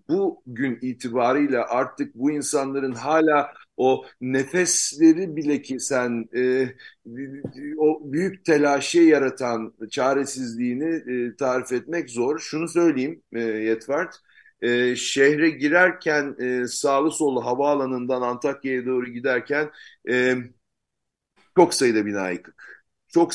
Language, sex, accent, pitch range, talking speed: Turkish, male, native, 120-145 Hz, 105 wpm